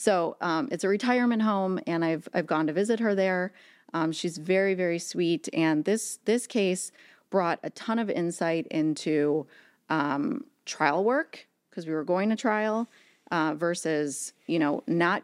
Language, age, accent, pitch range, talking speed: English, 30-49, American, 155-200 Hz, 170 wpm